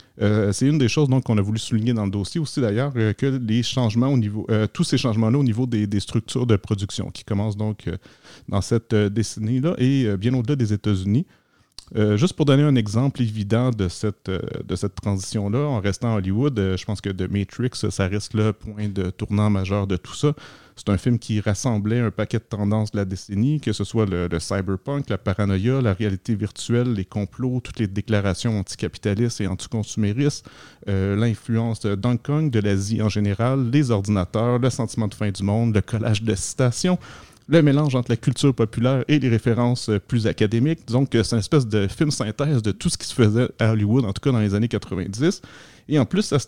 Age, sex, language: 30-49, male, French